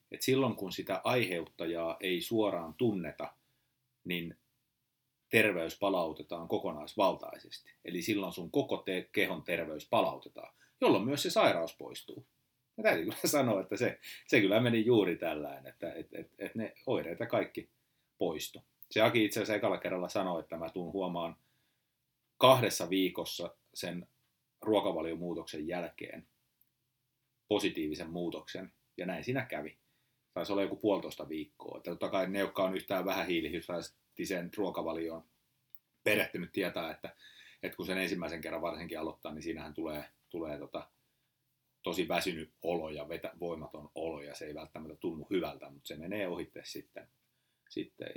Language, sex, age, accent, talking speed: Finnish, male, 30-49, native, 145 wpm